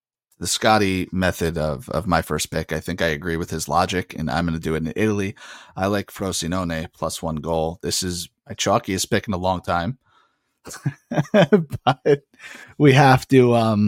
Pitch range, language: 85-105 Hz, English